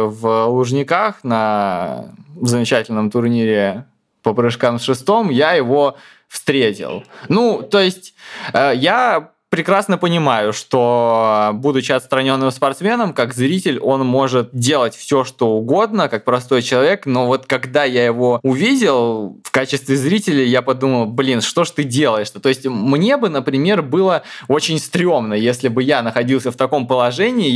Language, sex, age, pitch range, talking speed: Russian, male, 20-39, 125-150 Hz, 140 wpm